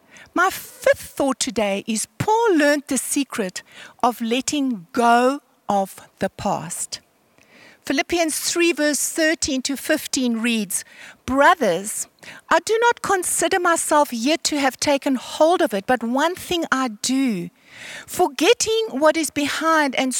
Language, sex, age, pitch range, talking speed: English, female, 60-79, 255-340 Hz, 135 wpm